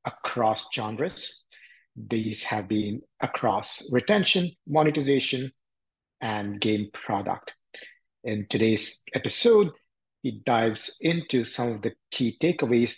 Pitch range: 110-135 Hz